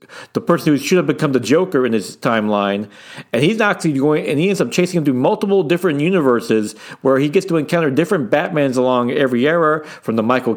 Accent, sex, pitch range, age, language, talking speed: American, male, 125-165 Hz, 40-59, English, 210 wpm